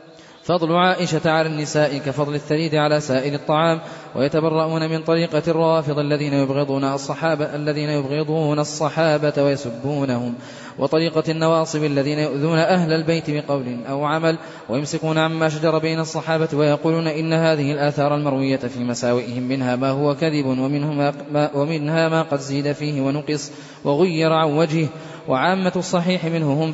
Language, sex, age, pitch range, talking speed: Arabic, male, 20-39, 145-160 Hz, 125 wpm